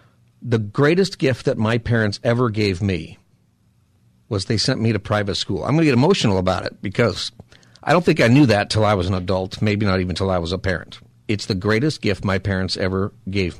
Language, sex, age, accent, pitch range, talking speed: English, male, 50-69, American, 100-120 Hz, 225 wpm